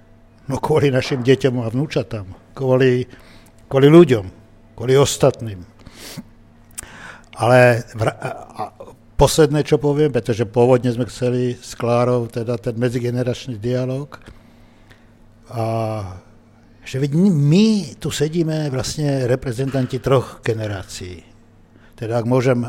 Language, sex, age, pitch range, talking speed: Slovak, male, 60-79, 110-140 Hz, 105 wpm